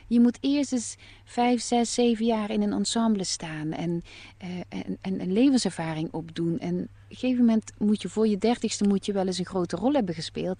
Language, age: Dutch, 30-49